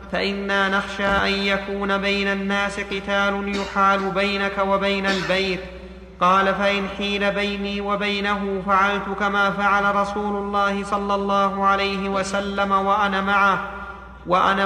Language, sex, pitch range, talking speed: Arabic, male, 195-205 Hz, 115 wpm